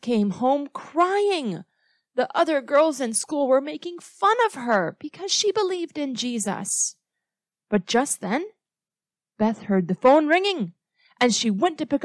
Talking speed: 155 wpm